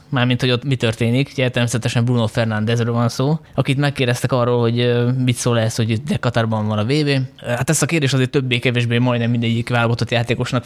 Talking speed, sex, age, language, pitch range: 190 wpm, male, 20-39, Hungarian, 115-135 Hz